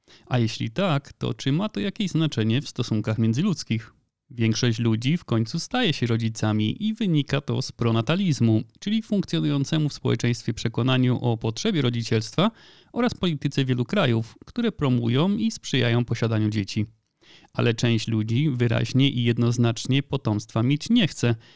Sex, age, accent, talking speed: male, 30-49, native, 145 wpm